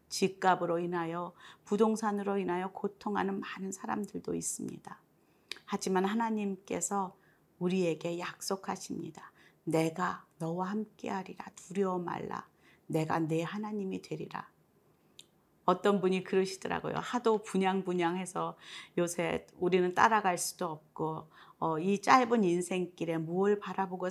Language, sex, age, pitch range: Korean, female, 40-59, 165-205 Hz